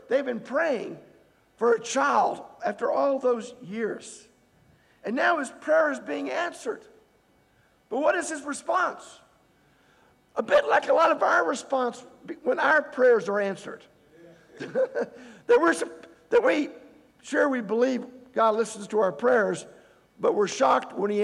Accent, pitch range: American, 220-295 Hz